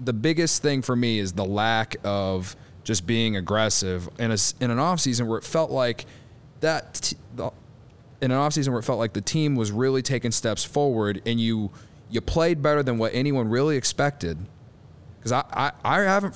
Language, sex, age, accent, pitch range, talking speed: English, male, 20-39, American, 105-130 Hz, 195 wpm